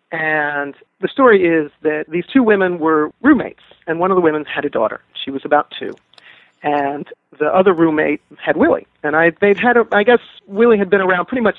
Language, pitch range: English, 155-200 Hz